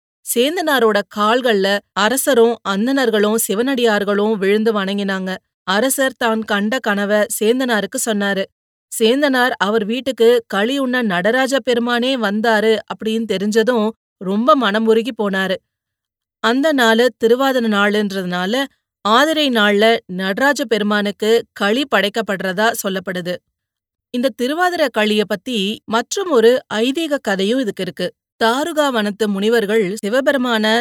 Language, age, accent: Tamil, 30-49, native